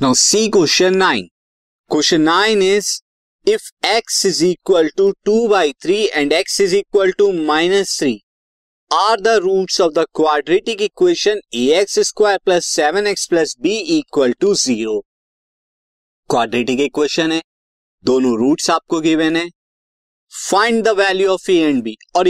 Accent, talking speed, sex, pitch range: native, 150 wpm, male, 155-240 Hz